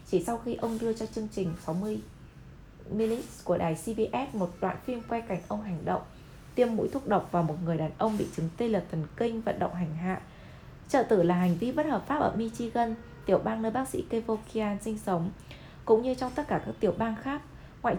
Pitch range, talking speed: 175-235 Hz, 225 wpm